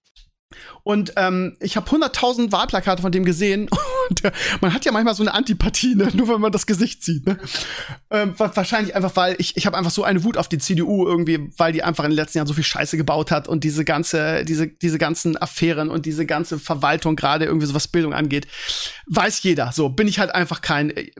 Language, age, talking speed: German, 40-59, 220 wpm